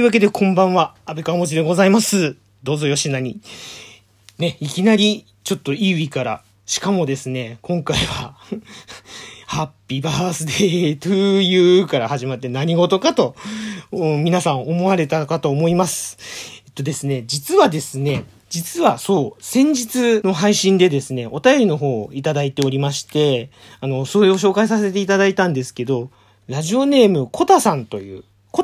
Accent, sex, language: native, male, Japanese